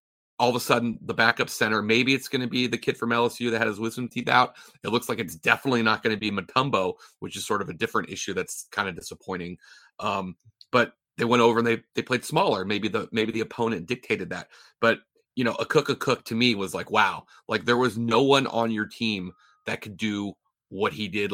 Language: English